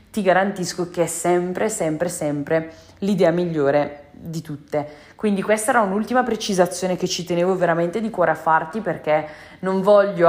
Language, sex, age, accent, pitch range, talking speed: Italian, female, 20-39, native, 165-200 Hz, 155 wpm